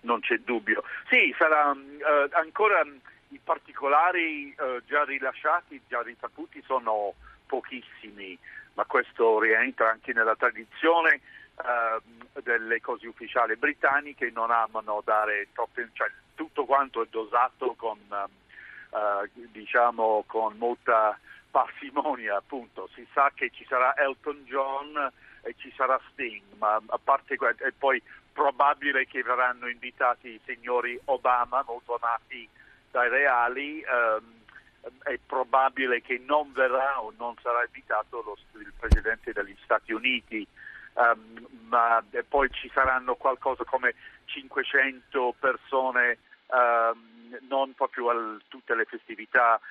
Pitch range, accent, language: 115-135 Hz, native, Italian